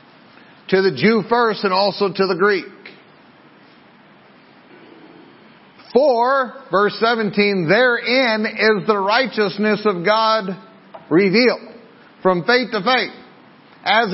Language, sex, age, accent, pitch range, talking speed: English, male, 40-59, American, 180-220 Hz, 100 wpm